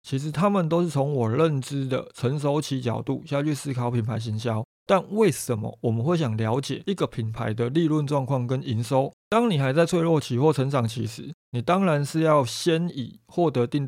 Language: Chinese